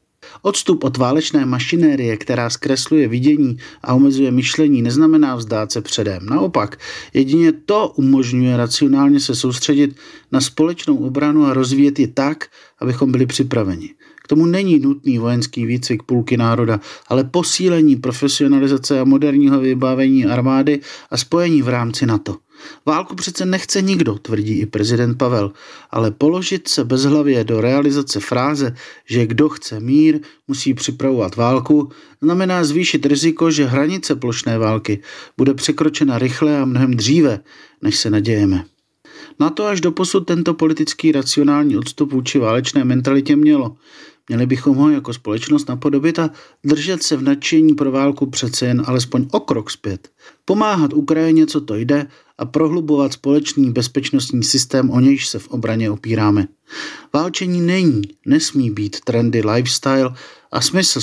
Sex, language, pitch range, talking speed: male, Czech, 125-150 Hz, 145 wpm